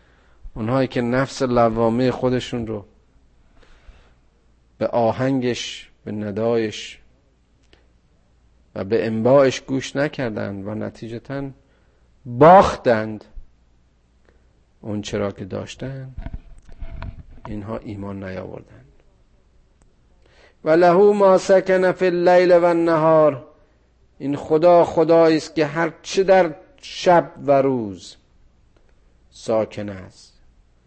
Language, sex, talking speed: Persian, male, 85 wpm